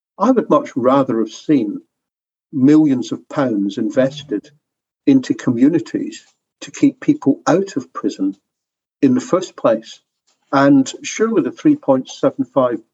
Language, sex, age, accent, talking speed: English, male, 50-69, British, 120 wpm